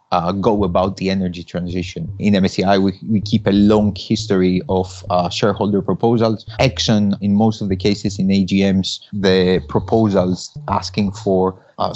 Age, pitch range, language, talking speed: 30-49, 100-110 Hz, English, 155 wpm